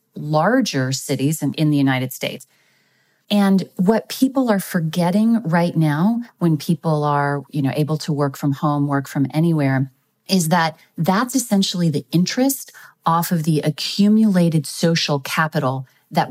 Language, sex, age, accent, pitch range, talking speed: English, female, 30-49, American, 145-180 Hz, 145 wpm